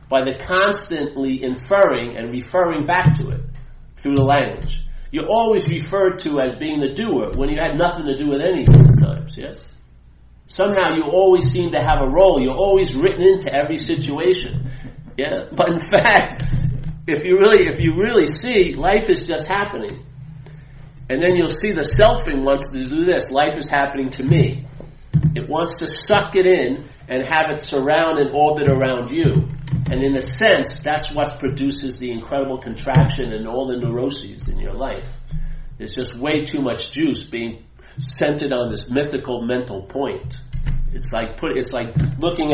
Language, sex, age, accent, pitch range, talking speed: English, male, 50-69, American, 130-155 Hz, 175 wpm